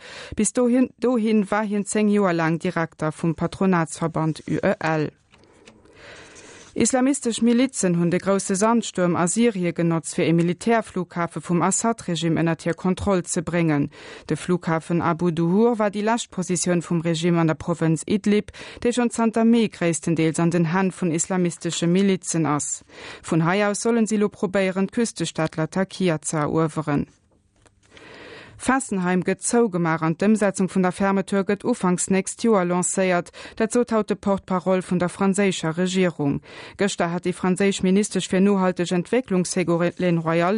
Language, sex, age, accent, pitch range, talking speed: English, female, 30-49, German, 170-210 Hz, 145 wpm